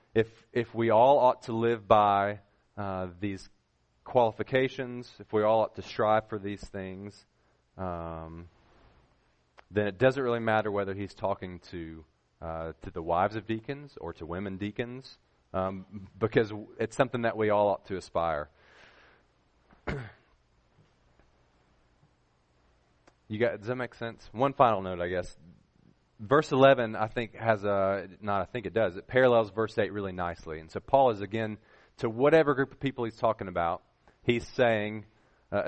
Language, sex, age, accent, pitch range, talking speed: English, male, 30-49, American, 90-115 Hz, 160 wpm